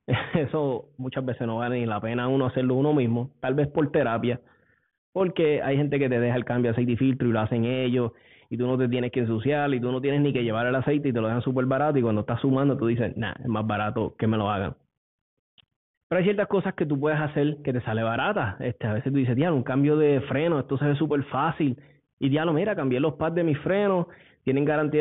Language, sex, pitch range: Spanish, male, 120-150 Hz